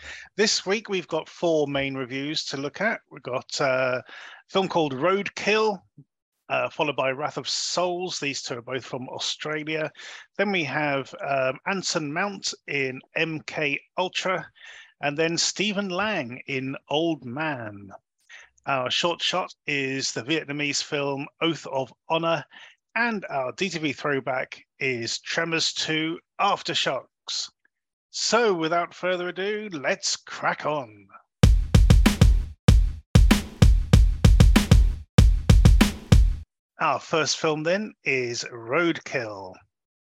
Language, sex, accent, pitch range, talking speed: English, male, British, 135-180 Hz, 110 wpm